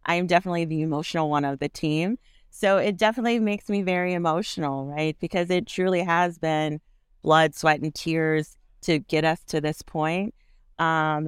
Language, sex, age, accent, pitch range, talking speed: English, female, 30-49, American, 145-175 Hz, 175 wpm